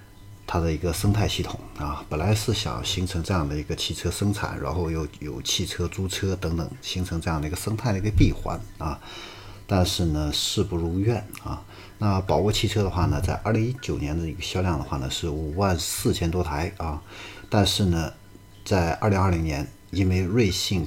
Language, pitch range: Chinese, 80-100 Hz